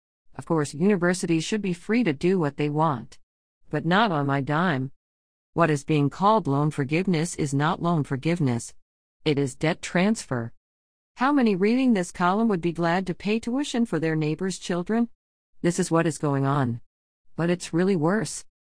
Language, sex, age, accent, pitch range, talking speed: English, female, 50-69, American, 140-185 Hz, 175 wpm